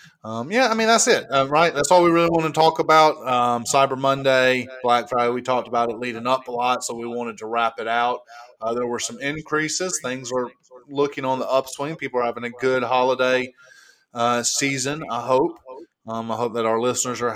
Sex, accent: male, American